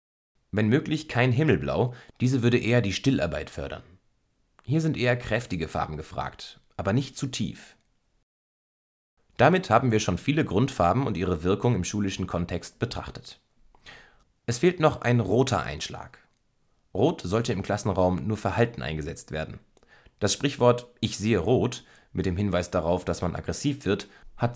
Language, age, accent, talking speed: German, 30-49, German, 150 wpm